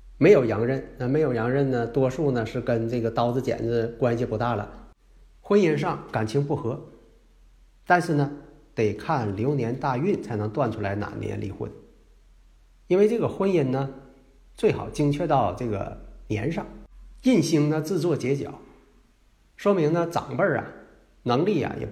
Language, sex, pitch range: Chinese, male, 115-155 Hz